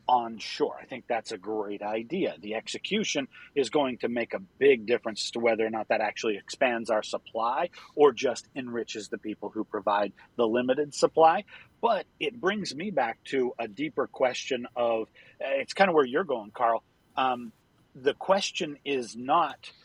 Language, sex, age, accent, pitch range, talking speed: English, male, 40-59, American, 115-150 Hz, 180 wpm